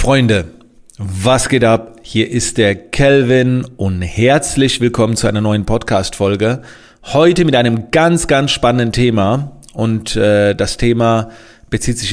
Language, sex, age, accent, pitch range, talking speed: German, male, 40-59, German, 110-135 Hz, 140 wpm